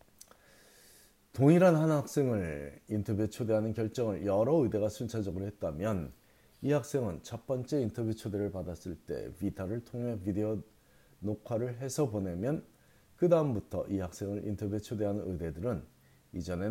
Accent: native